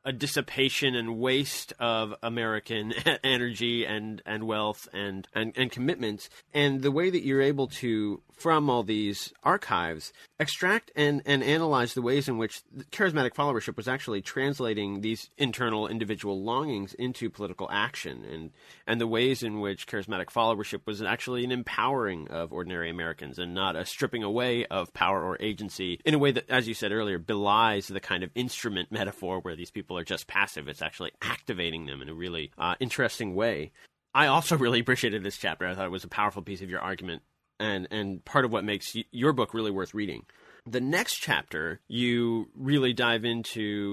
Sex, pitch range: male, 100-125 Hz